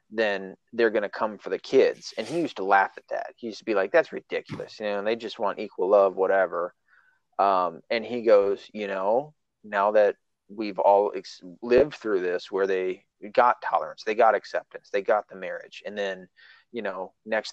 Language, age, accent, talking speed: English, 30-49, American, 205 wpm